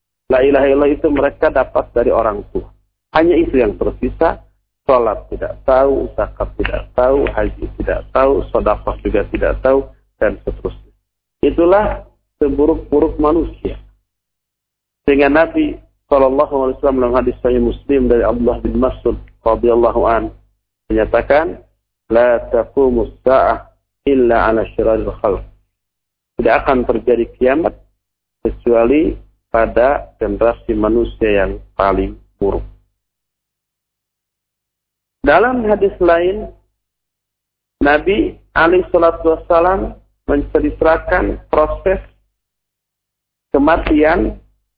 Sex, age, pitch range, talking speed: male, 50-69, 105-150 Hz, 85 wpm